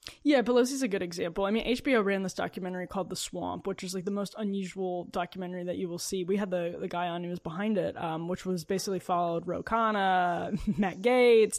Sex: female